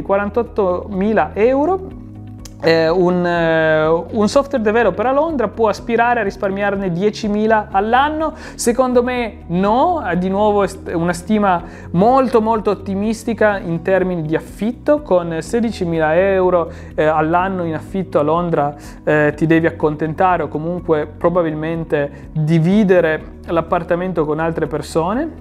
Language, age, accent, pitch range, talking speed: Italian, 30-49, native, 160-220 Hz, 130 wpm